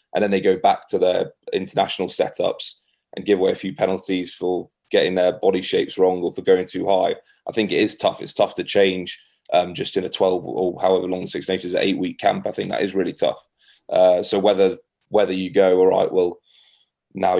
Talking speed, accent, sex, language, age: 220 wpm, British, male, English, 20-39